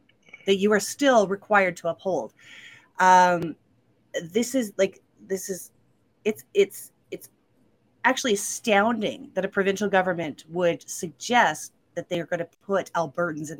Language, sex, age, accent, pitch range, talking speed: English, female, 30-49, American, 165-225 Hz, 135 wpm